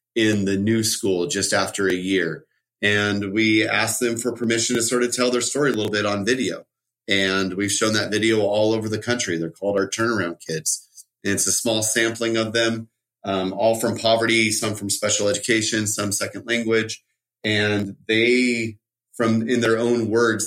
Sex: male